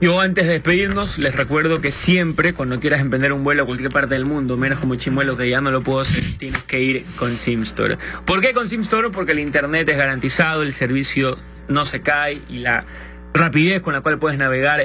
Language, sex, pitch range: English, male, 125-160 Hz